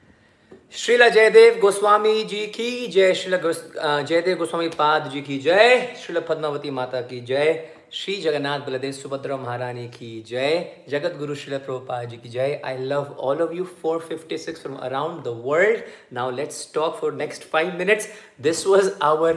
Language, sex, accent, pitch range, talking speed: Hindi, male, native, 130-165 Hz, 165 wpm